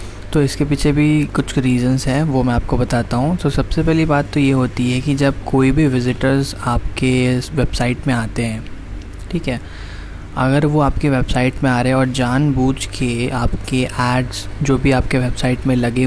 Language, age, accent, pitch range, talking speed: Hindi, 20-39, native, 120-140 Hz, 190 wpm